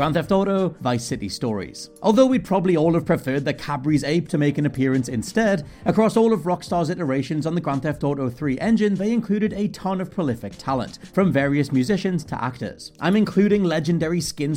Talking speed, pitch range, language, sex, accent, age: 200 wpm, 140-195 Hz, English, male, British, 40-59